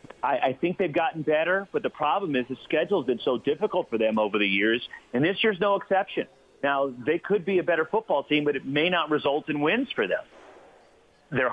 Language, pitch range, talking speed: English, 130-160 Hz, 220 wpm